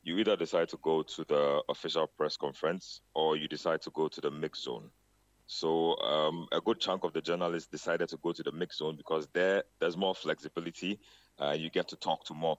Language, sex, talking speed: English, male, 225 wpm